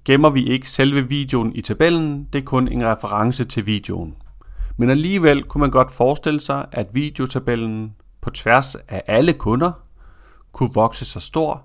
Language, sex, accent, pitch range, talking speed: Danish, male, native, 105-145 Hz, 165 wpm